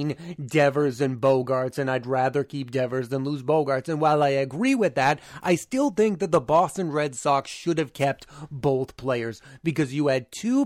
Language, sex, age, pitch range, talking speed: English, male, 30-49, 130-170 Hz, 190 wpm